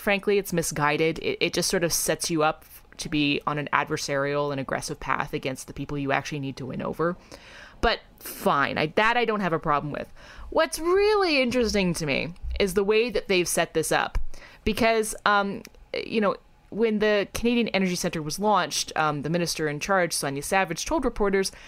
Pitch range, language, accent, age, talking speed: 150-220 Hz, English, American, 20-39, 195 wpm